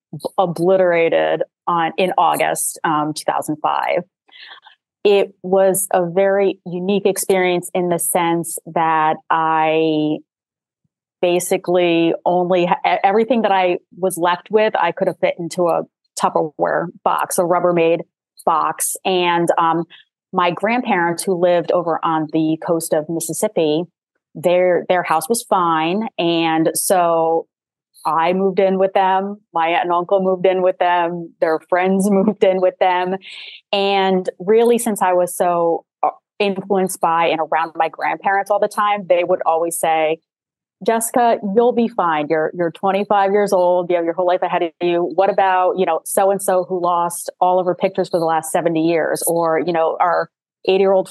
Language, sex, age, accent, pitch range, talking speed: English, female, 30-49, American, 165-195 Hz, 155 wpm